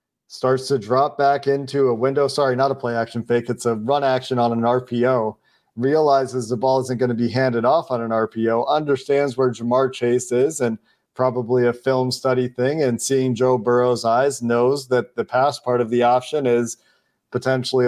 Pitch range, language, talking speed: 120-135 Hz, English, 190 wpm